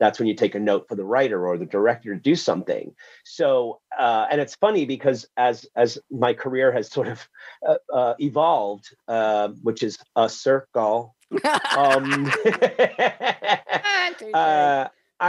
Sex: male